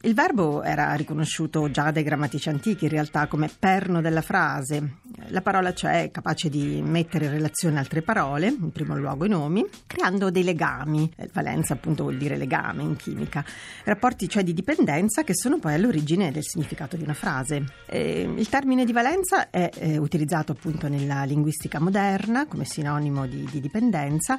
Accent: native